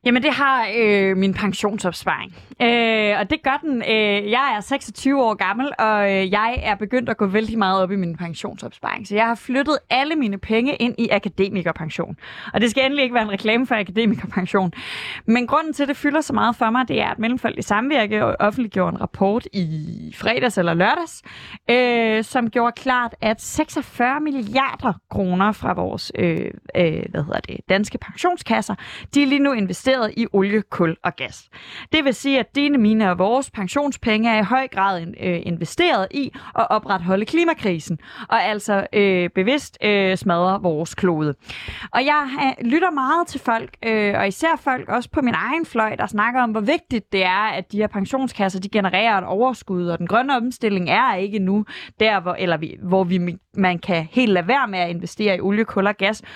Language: Danish